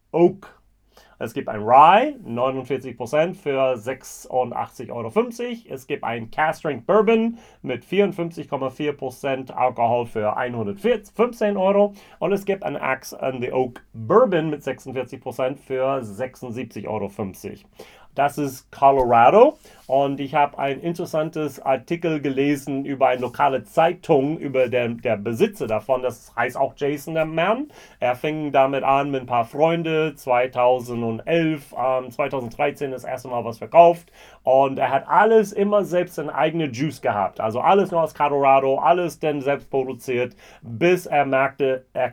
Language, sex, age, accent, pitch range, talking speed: German, male, 40-59, German, 130-160 Hz, 140 wpm